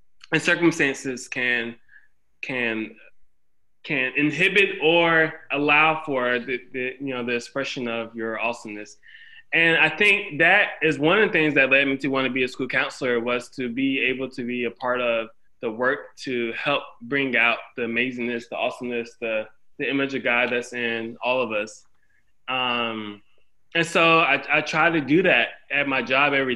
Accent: American